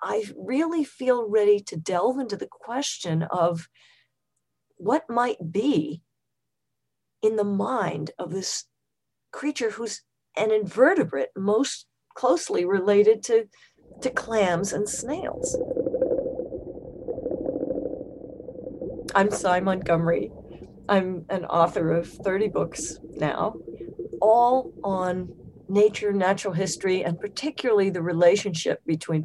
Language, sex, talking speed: English, female, 105 wpm